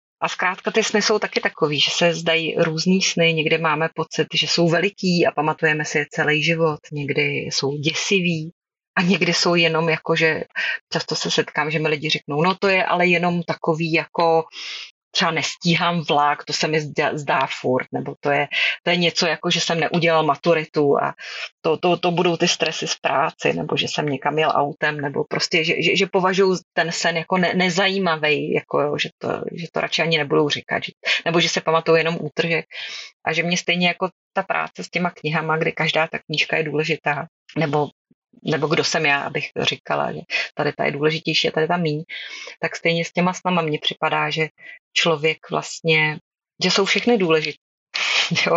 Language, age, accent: Czech, 30-49, native